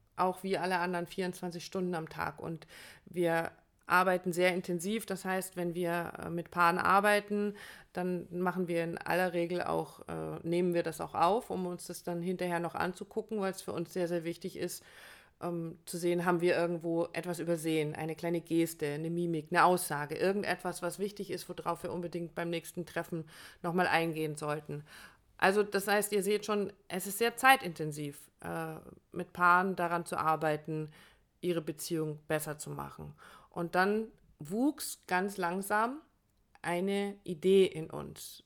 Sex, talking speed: female, 165 wpm